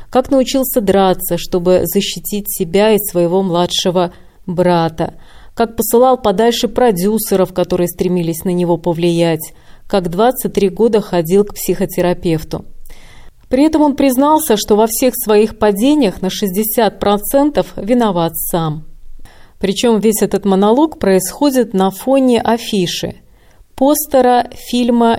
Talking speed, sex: 115 wpm, female